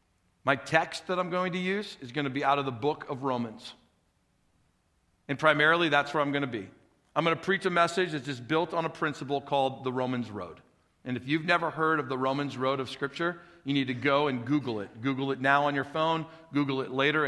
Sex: male